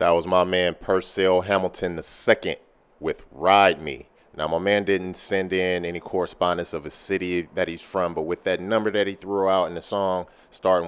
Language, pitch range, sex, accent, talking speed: English, 85-100 Hz, male, American, 205 wpm